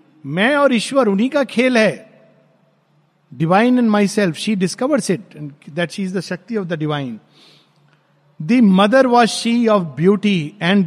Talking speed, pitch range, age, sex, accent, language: 140 wpm, 175-225 Hz, 50-69, male, native, Hindi